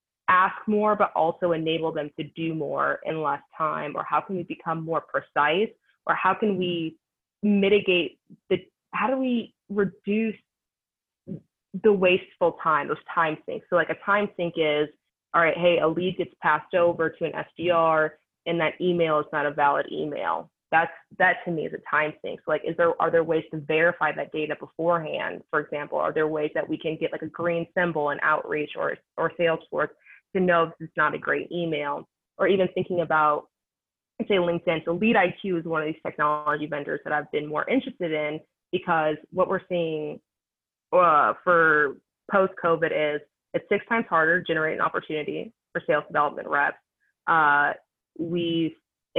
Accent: American